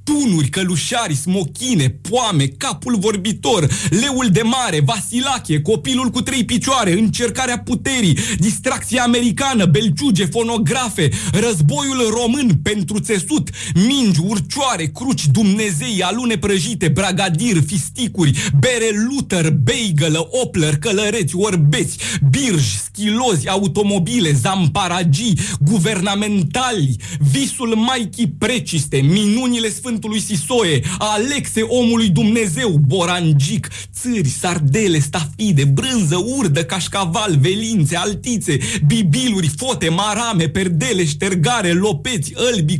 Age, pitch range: 40-59, 155-225 Hz